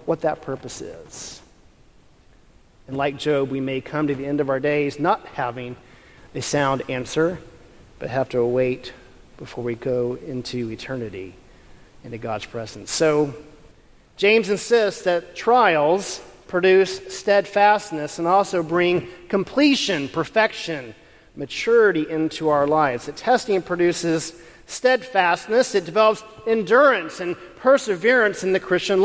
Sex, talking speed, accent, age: male, 125 wpm, American, 40-59